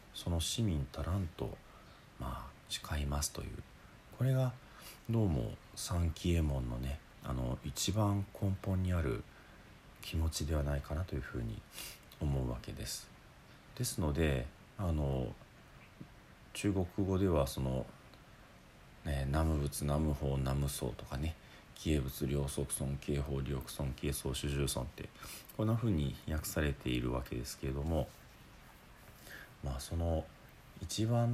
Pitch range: 70-105 Hz